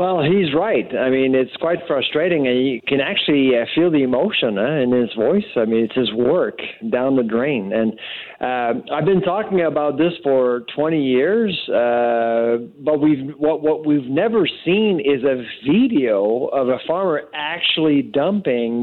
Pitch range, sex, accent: 130-170 Hz, male, American